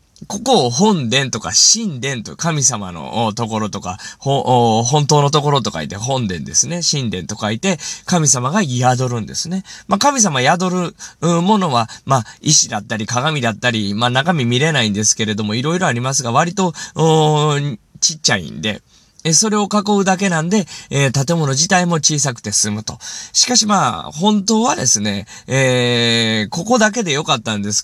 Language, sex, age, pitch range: Japanese, male, 20-39, 120-185 Hz